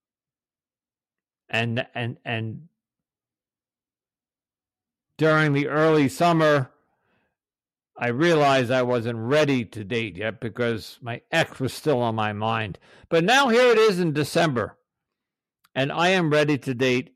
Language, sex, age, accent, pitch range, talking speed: English, male, 50-69, American, 115-150 Hz, 125 wpm